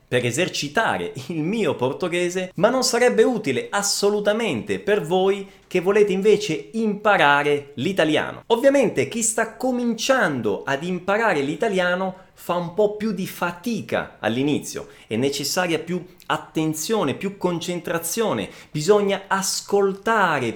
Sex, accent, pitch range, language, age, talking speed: male, native, 170-225 Hz, Italian, 30-49, 110 wpm